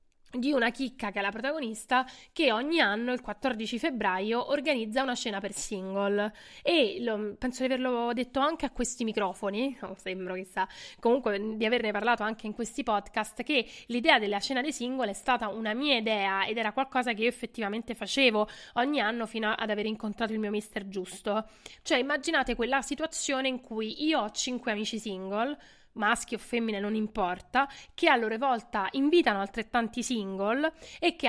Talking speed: 175 wpm